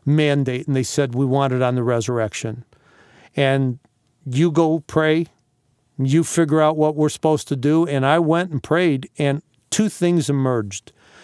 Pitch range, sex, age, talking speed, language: 125-160 Hz, male, 50-69, 165 wpm, English